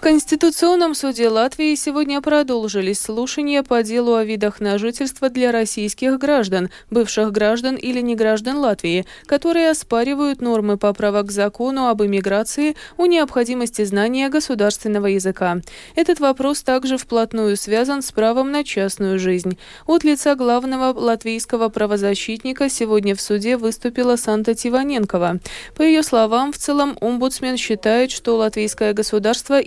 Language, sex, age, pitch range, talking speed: Russian, female, 20-39, 210-280 Hz, 135 wpm